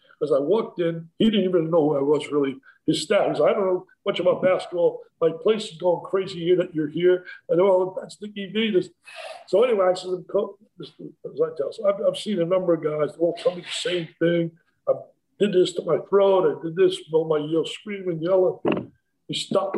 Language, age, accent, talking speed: English, 50-69, American, 235 wpm